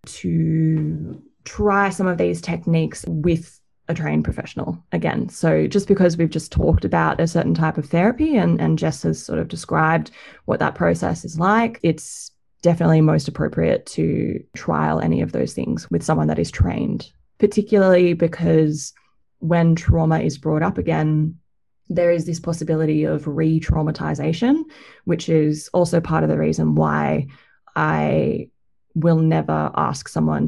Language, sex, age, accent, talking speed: English, female, 20-39, Australian, 150 wpm